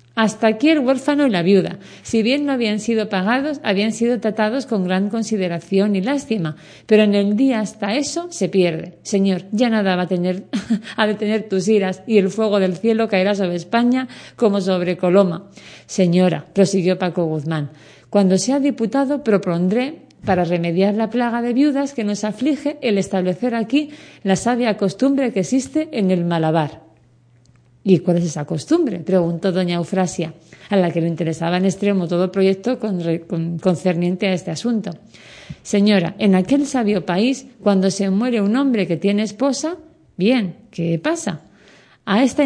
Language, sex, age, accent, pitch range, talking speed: Spanish, female, 40-59, Spanish, 180-240 Hz, 170 wpm